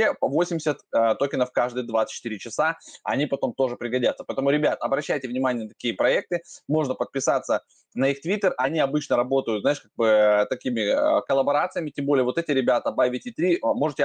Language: Russian